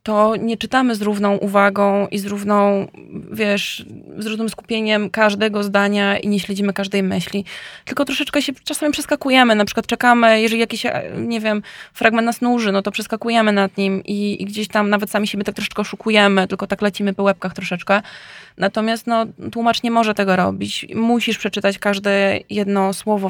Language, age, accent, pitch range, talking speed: Polish, 20-39, native, 195-220 Hz, 175 wpm